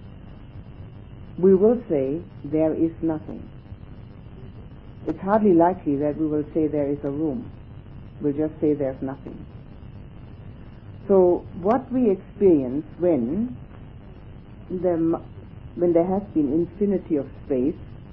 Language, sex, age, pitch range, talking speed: English, female, 60-79, 135-190 Hz, 115 wpm